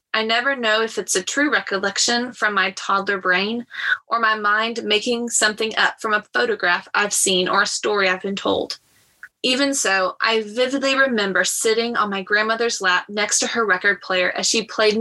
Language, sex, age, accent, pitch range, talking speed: English, female, 20-39, American, 195-235 Hz, 190 wpm